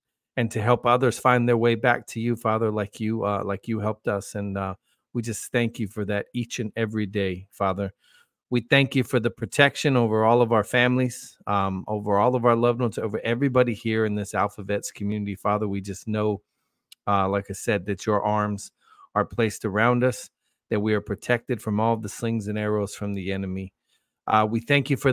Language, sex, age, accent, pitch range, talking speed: English, male, 40-59, American, 105-120 Hz, 215 wpm